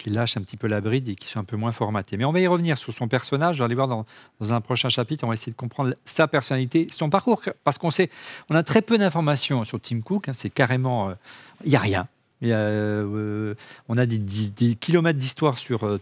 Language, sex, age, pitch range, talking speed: French, male, 40-59, 115-155 Hz, 260 wpm